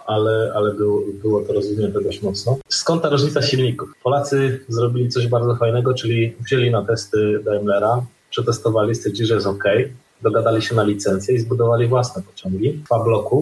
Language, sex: Polish, male